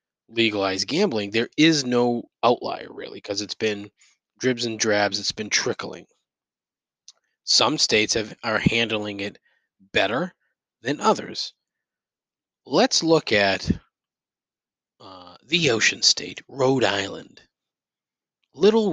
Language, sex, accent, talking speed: English, male, American, 110 wpm